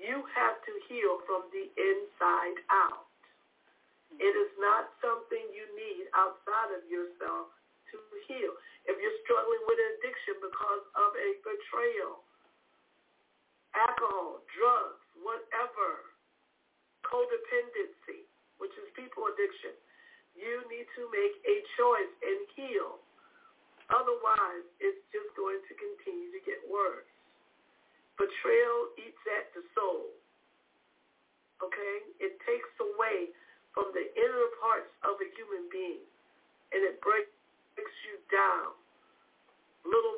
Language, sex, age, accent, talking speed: English, female, 50-69, American, 115 wpm